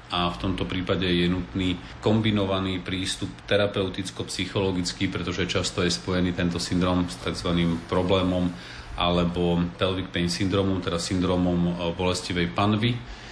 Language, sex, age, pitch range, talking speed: Slovak, male, 40-59, 90-100 Hz, 115 wpm